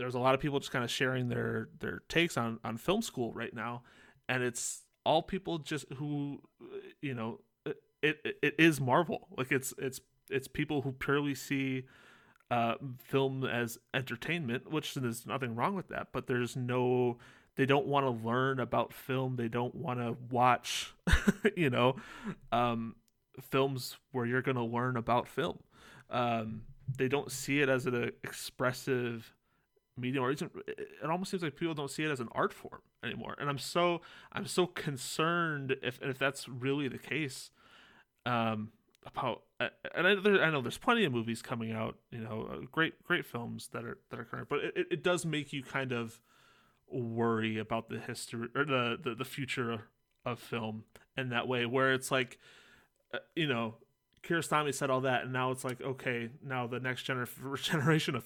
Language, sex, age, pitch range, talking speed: English, male, 30-49, 120-145 Hz, 185 wpm